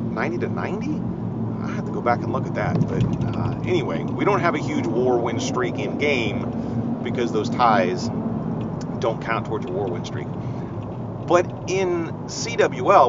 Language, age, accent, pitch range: English, 40-59, American, 115-145 Hz